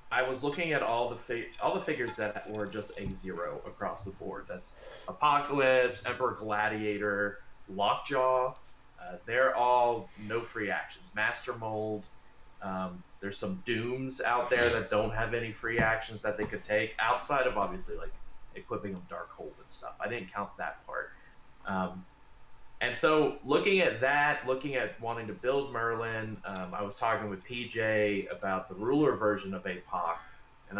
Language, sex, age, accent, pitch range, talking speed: English, male, 20-39, American, 100-125 Hz, 170 wpm